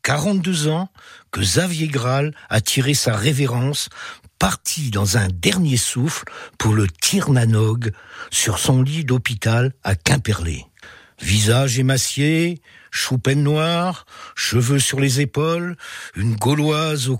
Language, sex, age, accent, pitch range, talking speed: French, male, 60-79, French, 115-150 Hz, 120 wpm